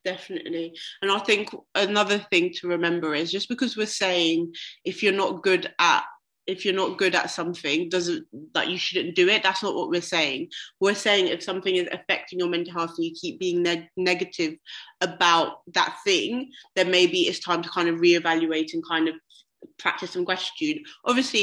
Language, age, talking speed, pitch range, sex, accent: English, 20-39, 195 wpm, 175-250 Hz, female, British